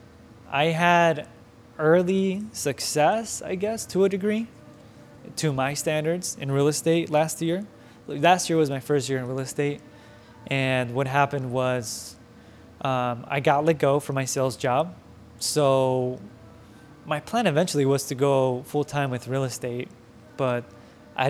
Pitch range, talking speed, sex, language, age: 120-150 Hz, 150 wpm, male, English, 20-39